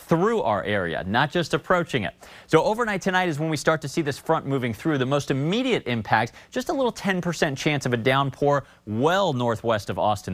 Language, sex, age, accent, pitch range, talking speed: English, male, 30-49, American, 110-165 Hz, 210 wpm